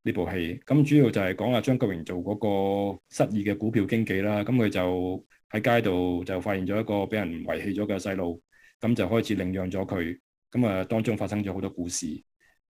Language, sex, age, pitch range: Chinese, male, 20-39, 95-120 Hz